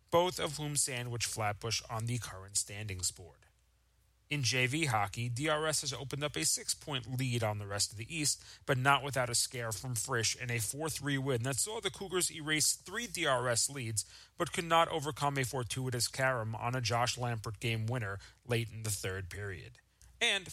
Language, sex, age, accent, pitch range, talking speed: English, male, 30-49, American, 105-145 Hz, 185 wpm